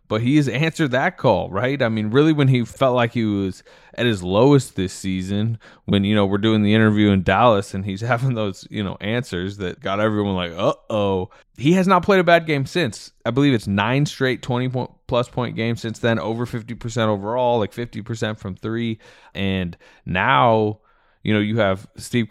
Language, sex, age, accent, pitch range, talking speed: English, male, 20-39, American, 95-120 Hz, 200 wpm